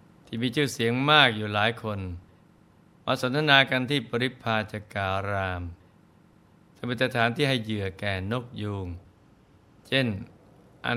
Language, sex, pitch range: Thai, male, 105-130 Hz